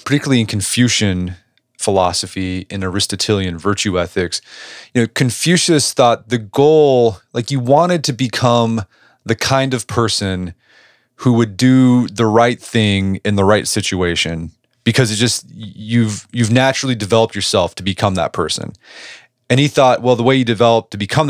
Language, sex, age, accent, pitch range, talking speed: English, male, 30-49, American, 95-125 Hz, 155 wpm